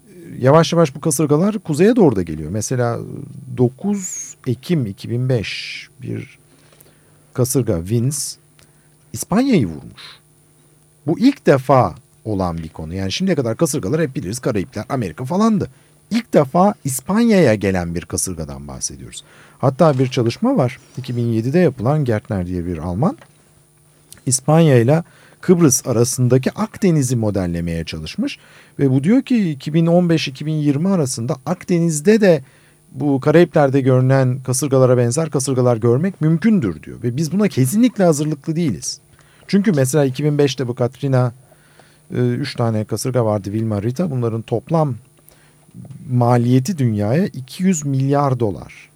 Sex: male